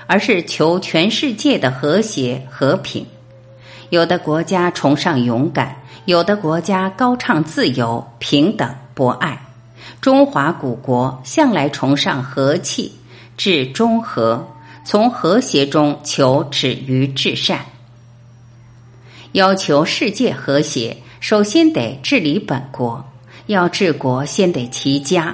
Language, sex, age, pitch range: Chinese, female, 50-69, 130-195 Hz